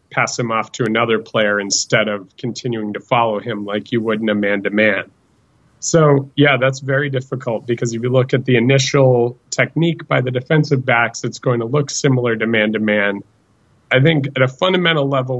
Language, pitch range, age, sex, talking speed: English, 110-130 Hz, 30-49, male, 185 wpm